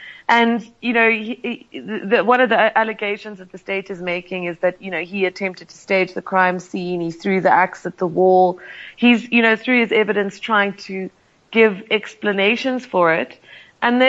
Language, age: English, 30-49